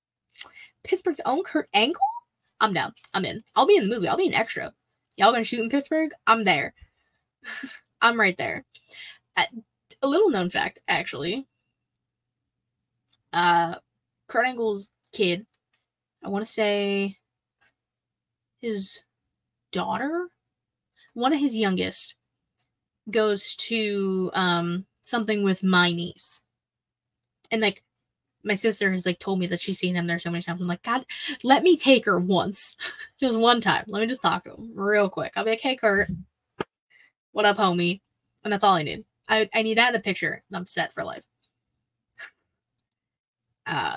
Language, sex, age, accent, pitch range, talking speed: English, female, 10-29, American, 180-255 Hz, 155 wpm